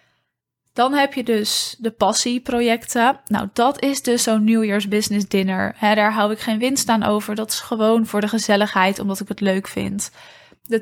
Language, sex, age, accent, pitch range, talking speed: Dutch, female, 20-39, Dutch, 205-230 Hz, 190 wpm